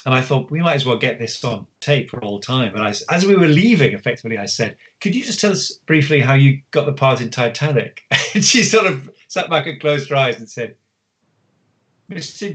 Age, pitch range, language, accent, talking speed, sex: 30-49, 115-165 Hz, English, British, 235 wpm, male